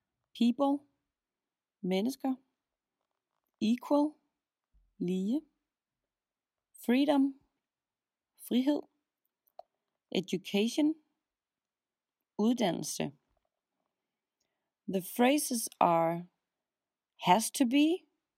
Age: 30-49